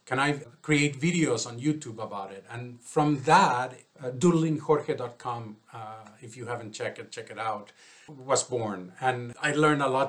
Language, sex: English, male